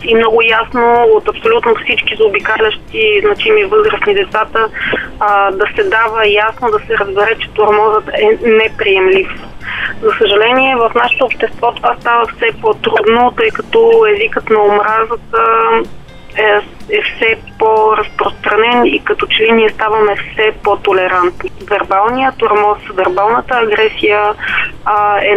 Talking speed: 125 wpm